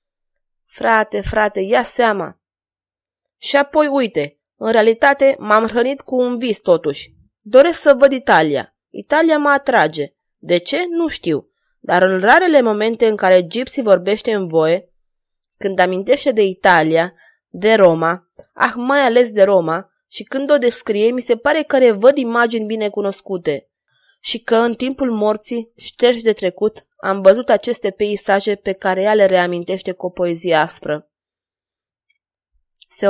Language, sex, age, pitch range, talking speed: Romanian, female, 20-39, 180-245 Hz, 145 wpm